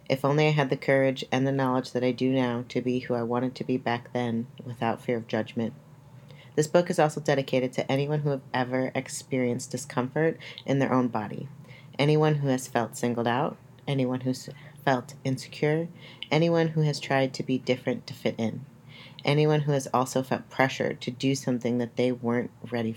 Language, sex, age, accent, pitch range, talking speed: English, female, 30-49, American, 125-140 Hz, 195 wpm